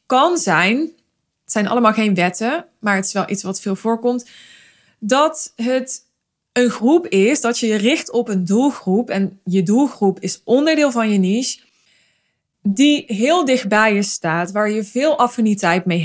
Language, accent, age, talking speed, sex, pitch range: Dutch, Dutch, 20-39, 170 wpm, female, 200-255 Hz